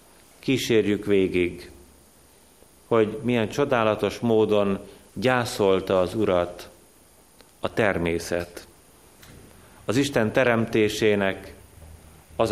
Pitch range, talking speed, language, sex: 90-115 Hz, 70 wpm, Hungarian, male